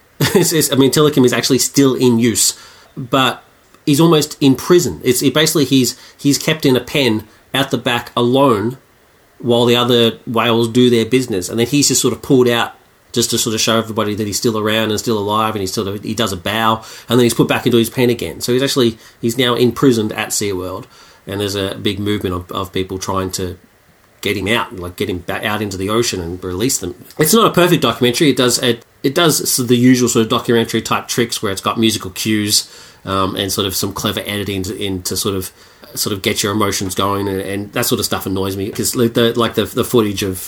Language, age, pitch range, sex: English, 40-59, 100-125 Hz, male